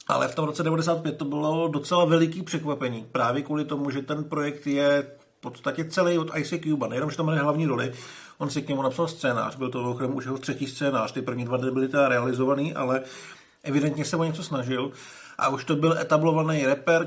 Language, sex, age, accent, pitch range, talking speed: Czech, male, 50-69, native, 135-170 Hz, 205 wpm